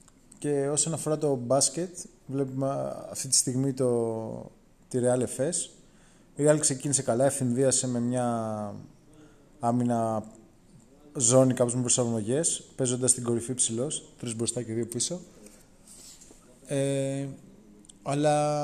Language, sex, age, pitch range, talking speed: Greek, male, 20-39, 125-145 Hz, 115 wpm